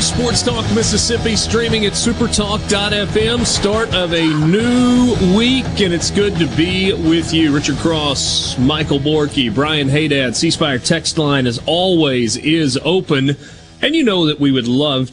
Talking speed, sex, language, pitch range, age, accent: 155 wpm, male, English, 135-175 Hz, 30-49, American